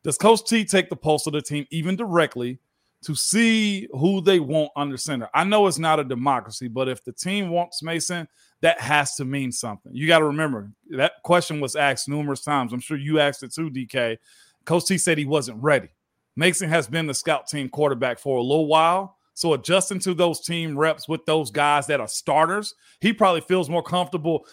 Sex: male